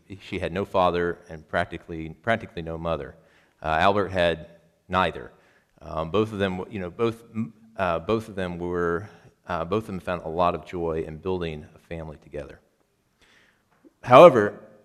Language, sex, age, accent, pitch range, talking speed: English, male, 40-59, American, 85-110 Hz, 160 wpm